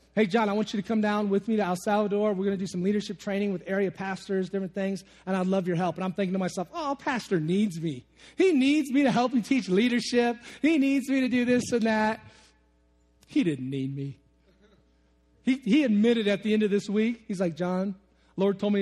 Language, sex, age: English, male, 30-49